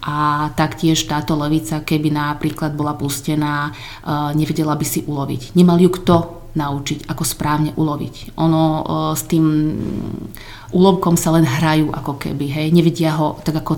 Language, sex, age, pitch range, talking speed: Slovak, female, 30-49, 150-170 Hz, 145 wpm